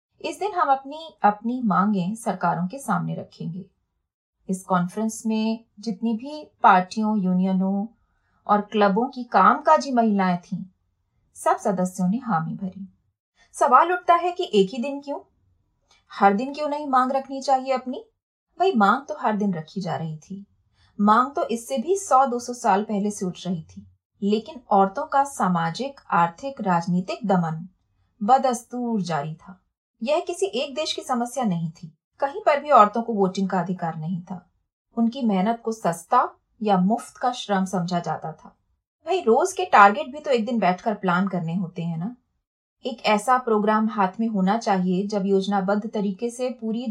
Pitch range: 185-255 Hz